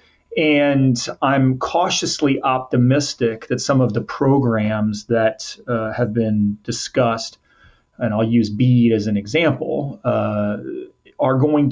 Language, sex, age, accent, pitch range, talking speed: English, male, 30-49, American, 115-140 Hz, 125 wpm